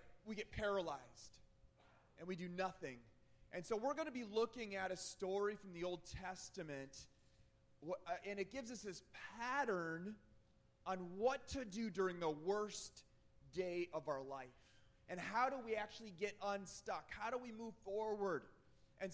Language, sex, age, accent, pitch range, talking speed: English, male, 30-49, American, 175-220 Hz, 160 wpm